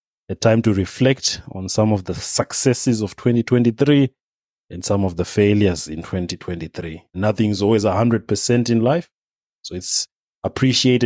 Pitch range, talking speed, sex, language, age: 100-120 Hz, 135 wpm, male, English, 30-49